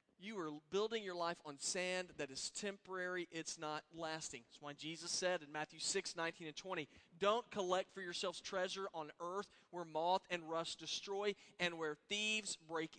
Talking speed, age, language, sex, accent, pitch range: 180 wpm, 40-59, English, male, American, 155-195 Hz